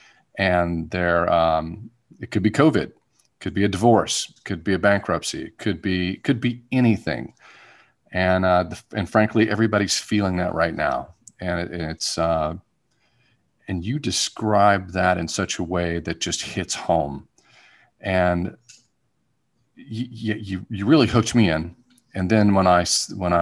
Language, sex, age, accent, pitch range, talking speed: English, male, 40-59, American, 90-120 Hz, 150 wpm